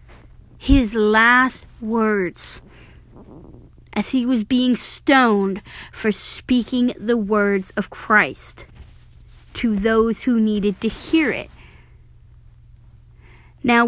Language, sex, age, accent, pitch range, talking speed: English, female, 30-49, American, 210-260 Hz, 95 wpm